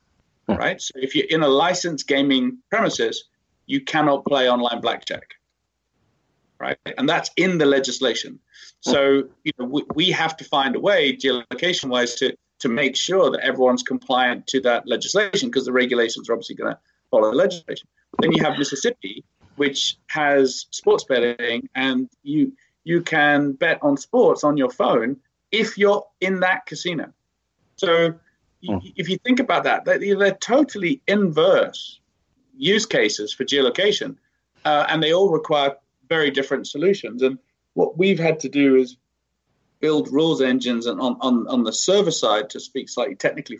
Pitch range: 125-180 Hz